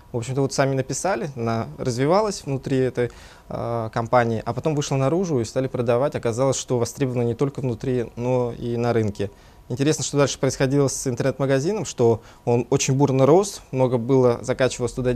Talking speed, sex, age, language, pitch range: 165 wpm, male, 20-39, Russian, 115-135 Hz